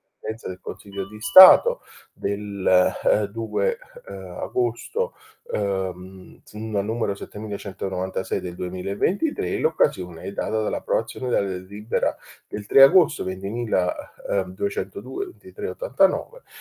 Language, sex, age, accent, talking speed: Italian, male, 30-49, native, 85 wpm